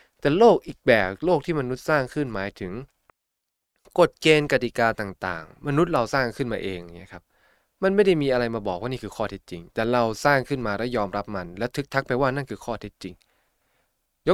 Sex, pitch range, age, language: male, 100-145 Hz, 20-39, Thai